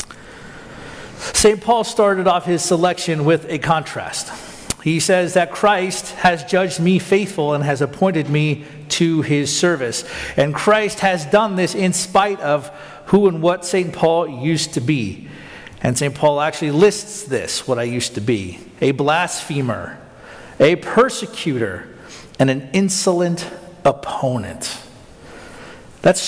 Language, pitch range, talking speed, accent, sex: English, 145-185 Hz, 135 wpm, American, male